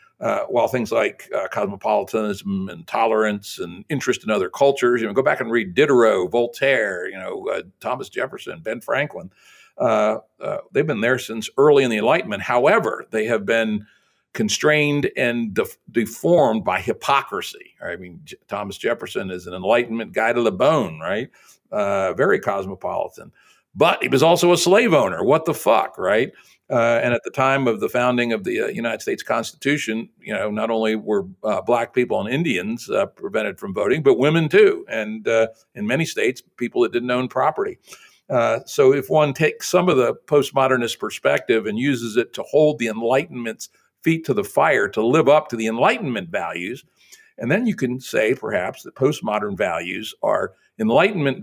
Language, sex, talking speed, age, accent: English, male, 180 wpm, 60-79, American